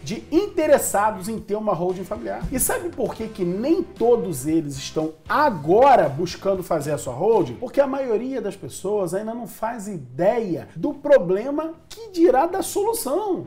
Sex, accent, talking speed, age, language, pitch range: male, Brazilian, 165 wpm, 40-59, Portuguese, 180-290 Hz